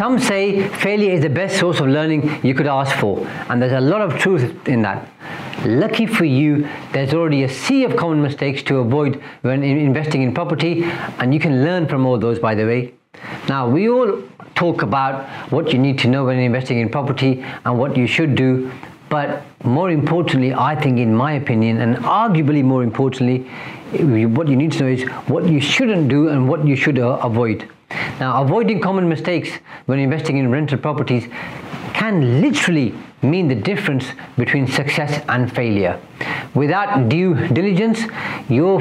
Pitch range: 125-160 Hz